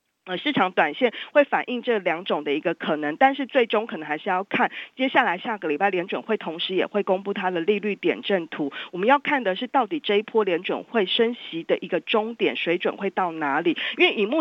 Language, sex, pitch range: Chinese, female, 175-230 Hz